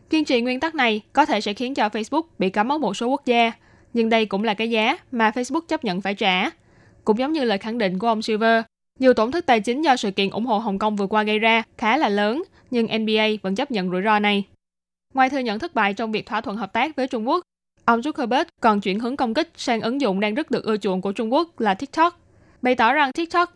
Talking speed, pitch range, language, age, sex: 265 wpm, 210-255 Hz, Vietnamese, 10-29, female